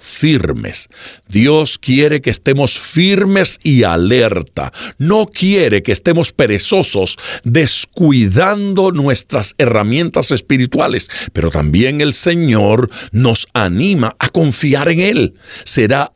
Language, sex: Spanish, male